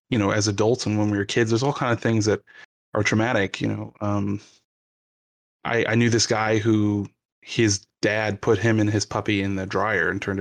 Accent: American